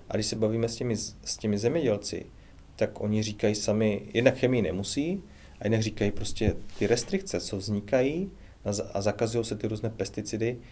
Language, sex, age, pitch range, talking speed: Czech, male, 30-49, 100-115 Hz, 170 wpm